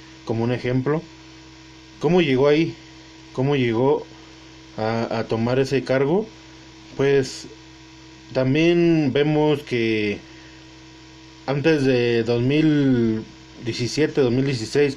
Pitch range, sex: 95-135 Hz, male